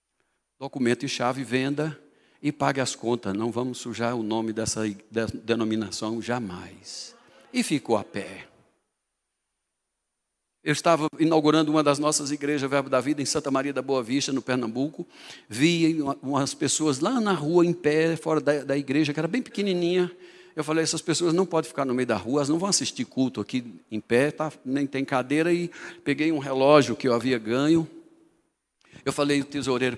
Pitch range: 120-160 Hz